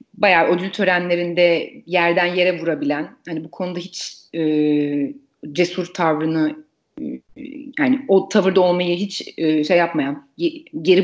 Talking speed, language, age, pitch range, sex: 125 wpm, Turkish, 30-49, 165-255 Hz, female